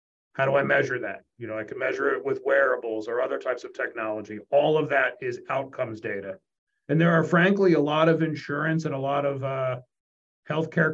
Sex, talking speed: male, 210 wpm